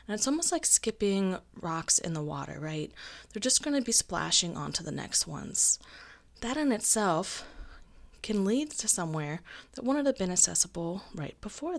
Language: English